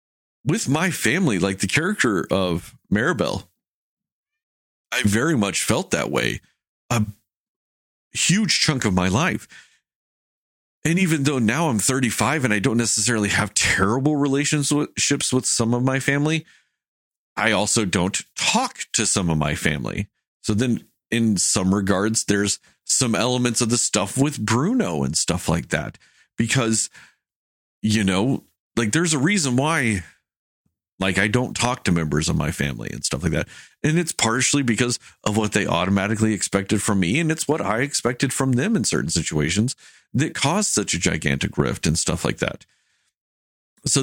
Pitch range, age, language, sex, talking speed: 95-135 Hz, 40-59, English, male, 160 wpm